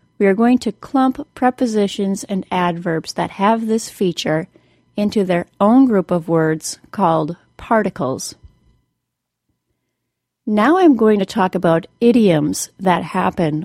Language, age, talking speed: English, 30-49, 130 wpm